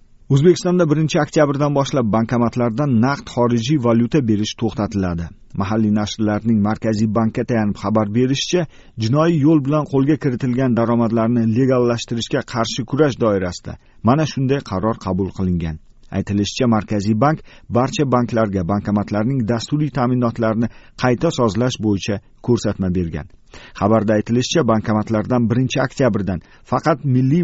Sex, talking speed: male, 110 wpm